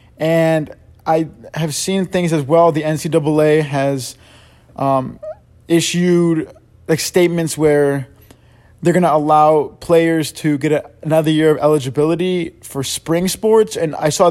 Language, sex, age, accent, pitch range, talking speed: English, male, 20-39, American, 140-165 Hz, 140 wpm